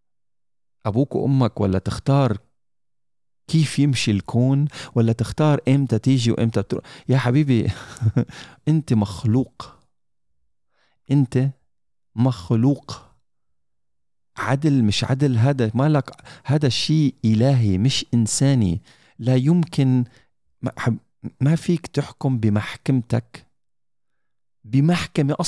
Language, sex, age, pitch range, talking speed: Arabic, male, 40-59, 115-150 Hz, 85 wpm